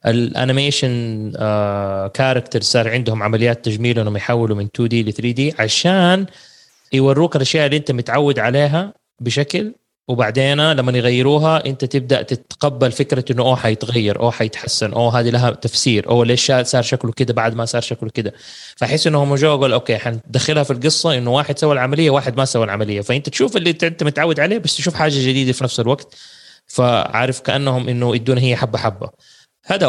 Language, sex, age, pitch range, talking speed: English, male, 20-39, 115-145 Hz, 155 wpm